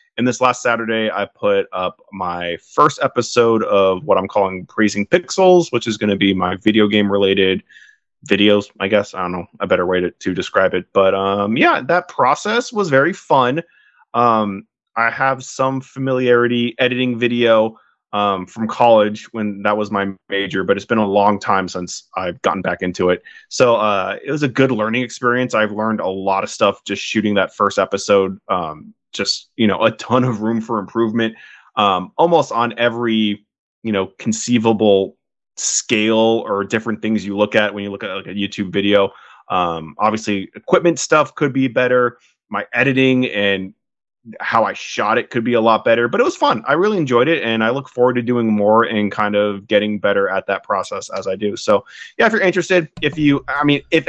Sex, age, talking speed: male, 20-39, 200 wpm